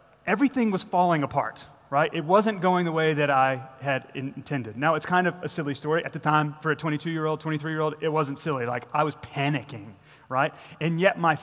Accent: American